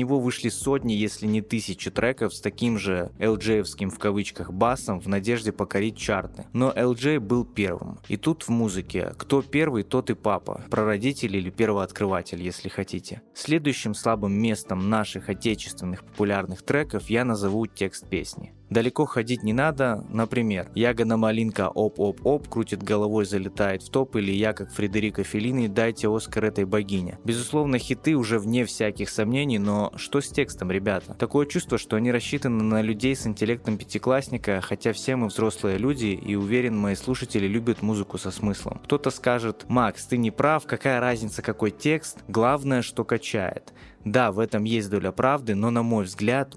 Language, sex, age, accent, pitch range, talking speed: Russian, male, 20-39, native, 100-120 Hz, 160 wpm